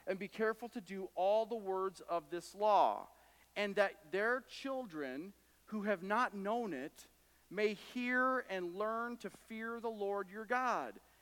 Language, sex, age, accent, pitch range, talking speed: English, male, 40-59, American, 155-225 Hz, 160 wpm